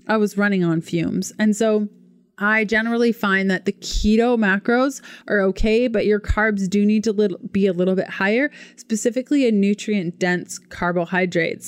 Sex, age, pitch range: female, 20-39, 185-220 Hz